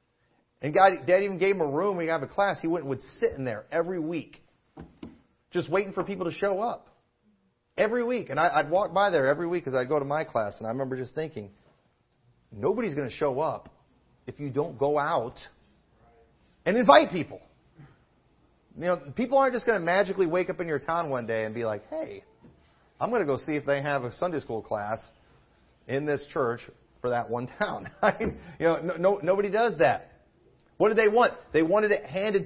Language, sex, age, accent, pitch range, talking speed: English, male, 40-59, American, 135-195 Hz, 210 wpm